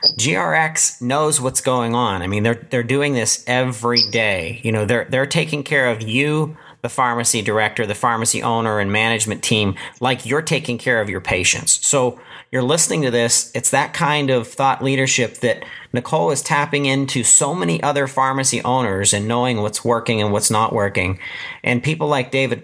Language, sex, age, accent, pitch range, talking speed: English, male, 40-59, American, 105-135 Hz, 185 wpm